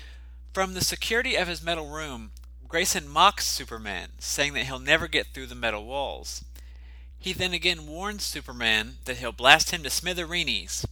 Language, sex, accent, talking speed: English, male, American, 165 wpm